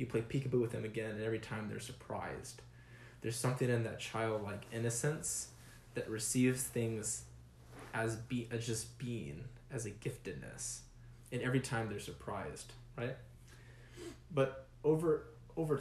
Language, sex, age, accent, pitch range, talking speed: English, male, 10-29, American, 110-125 Hz, 140 wpm